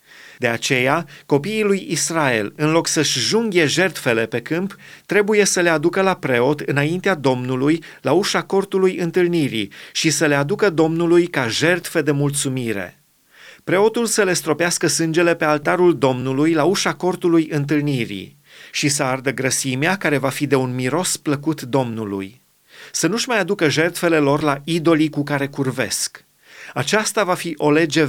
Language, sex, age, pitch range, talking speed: Romanian, male, 30-49, 140-180 Hz, 155 wpm